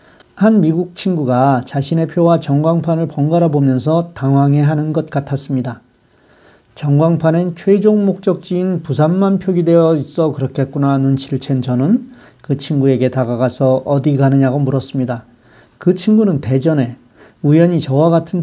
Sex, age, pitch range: male, 40-59, 135-170 Hz